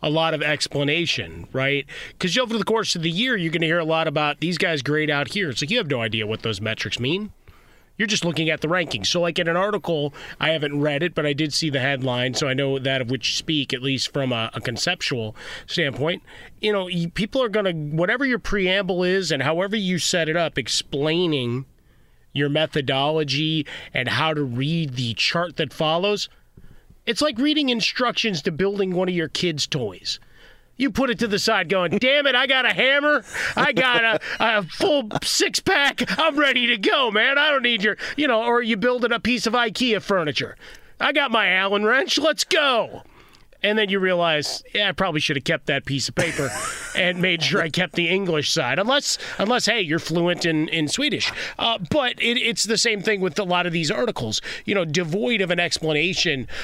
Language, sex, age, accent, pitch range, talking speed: English, male, 30-49, American, 145-205 Hz, 215 wpm